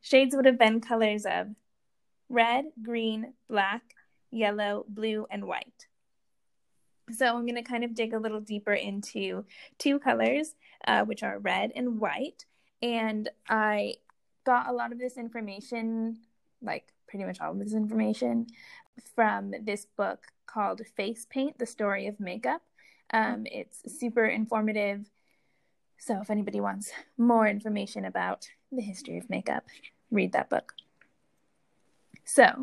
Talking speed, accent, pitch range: 140 wpm, American, 205-240 Hz